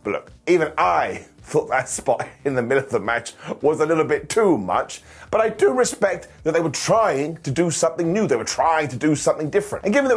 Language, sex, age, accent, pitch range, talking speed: English, male, 30-49, British, 140-220 Hz, 240 wpm